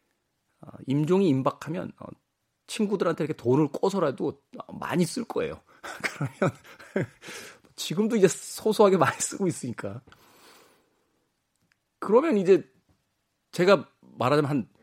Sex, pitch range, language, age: male, 110-170 Hz, Korean, 40-59